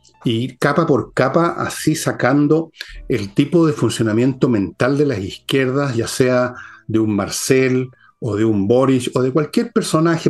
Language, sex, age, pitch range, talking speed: Spanish, male, 50-69, 115-150 Hz, 155 wpm